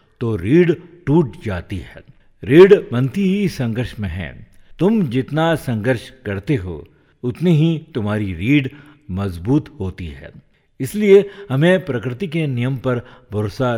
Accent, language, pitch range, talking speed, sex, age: native, Hindi, 100-150 Hz, 130 wpm, male, 60-79